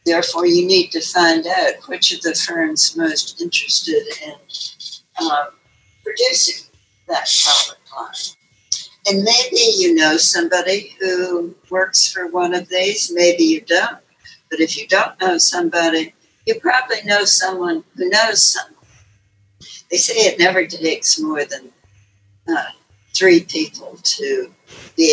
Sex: female